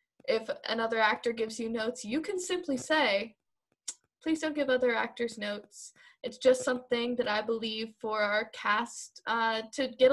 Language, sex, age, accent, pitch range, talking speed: English, female, 10-29, American, 230-300 Hz, 165 wpm